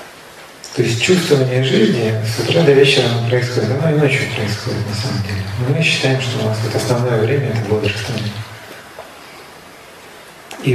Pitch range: 115-135 Hz